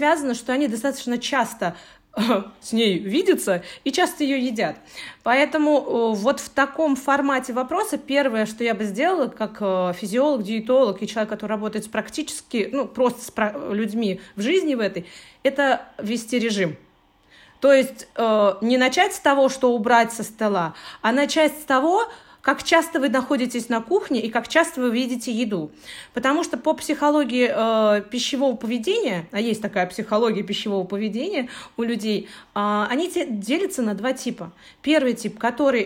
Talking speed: 155 wpm